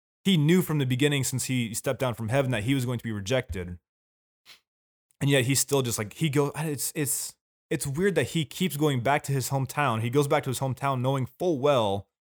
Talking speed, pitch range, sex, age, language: 230 wpm, 115-145 Hz, male, 20-39, English